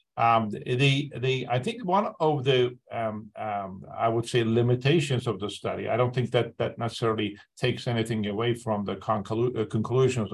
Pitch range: 105-125 Hz